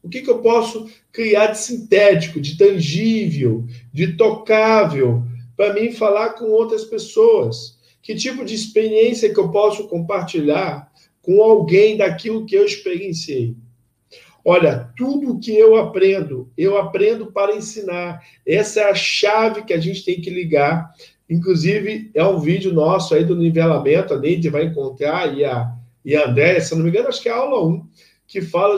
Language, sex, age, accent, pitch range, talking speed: Portuguese, male, 50-69, Brazilian, 145-215 Hz, 165 wpm